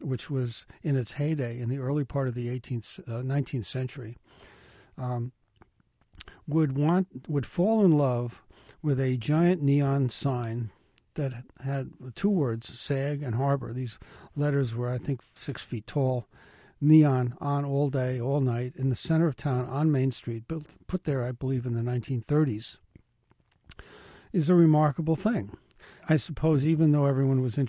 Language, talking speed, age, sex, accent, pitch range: English, 160 wpm, 60-79, male, American, 120-150 Hz